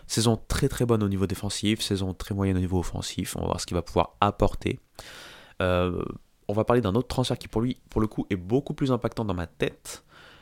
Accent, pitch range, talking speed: French, 95-115 Hz, 240 wpm